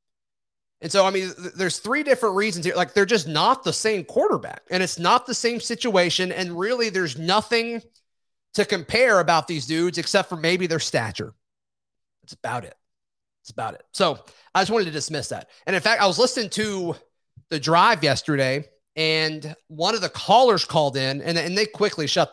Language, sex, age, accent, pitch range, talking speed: English, male, 30-49, American, 150-195 Hz, 190 wpm